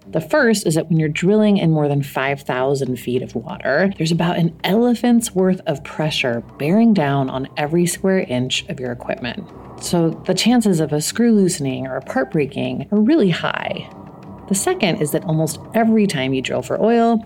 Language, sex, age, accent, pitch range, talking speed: English, female, 30-49, American, 130-195 Hz, 190 wpm